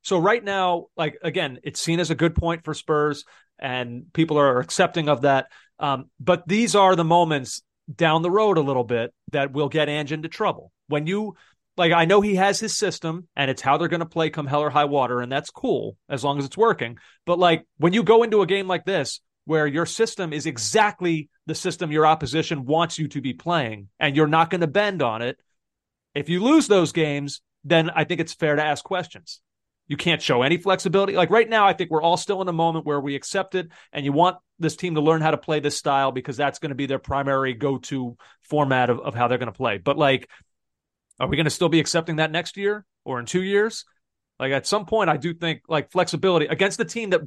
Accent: American